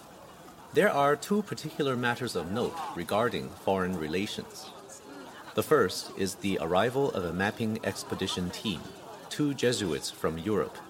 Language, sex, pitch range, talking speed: English, male, 90-115 Hz, 130 wpm